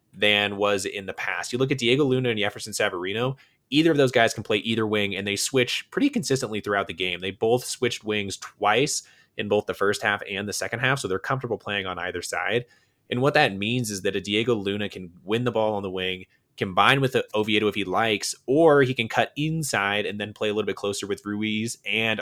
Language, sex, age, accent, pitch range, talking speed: English, male, 20-39, American, 100-120 Hz, 240 wpm